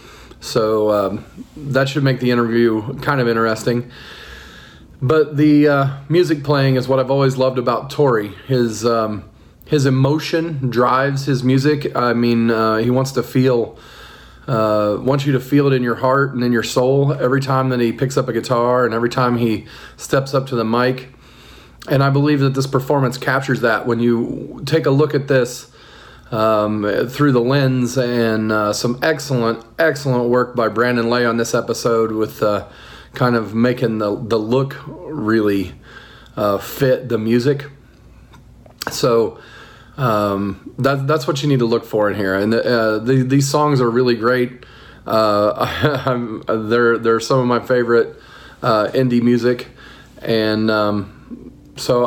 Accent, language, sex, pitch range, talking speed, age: American, English, male, 115-135 Hz, 160 wpm, 40-59